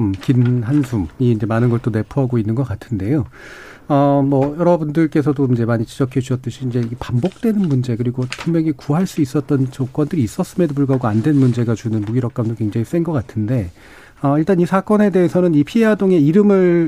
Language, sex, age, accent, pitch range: Korean, male, 40-59, native, 120-155 Hz